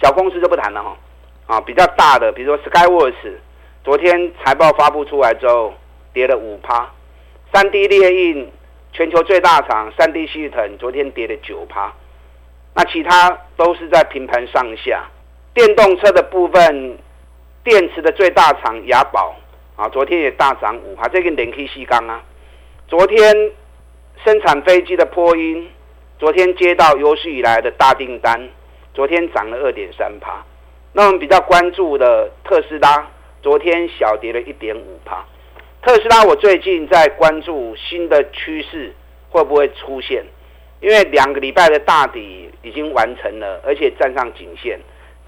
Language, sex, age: Chinese, male, 50-69